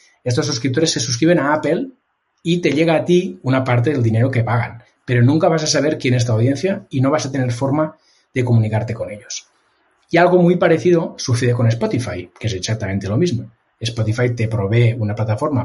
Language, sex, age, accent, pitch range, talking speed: Spanish, male, 30-49, Spanish, 115-150 Hz, 205 wpm